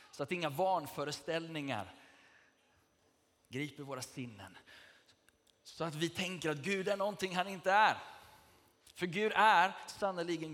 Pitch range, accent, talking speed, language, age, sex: 115-155 Hz, native, 125 wpm, Swedish, 30-49, male